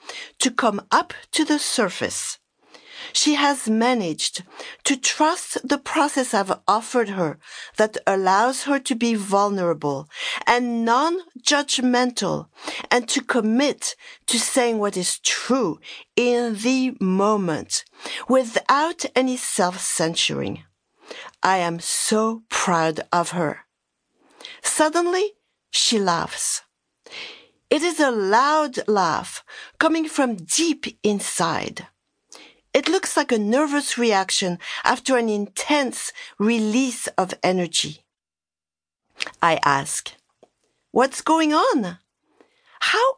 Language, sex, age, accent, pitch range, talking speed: English, female, 50-69, French, 200-300 Hz, 105 wpm